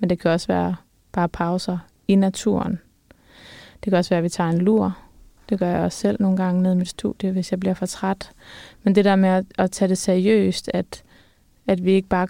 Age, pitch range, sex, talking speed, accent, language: 20-39, 180-200 Hz, female, 225 wpm, native, Danish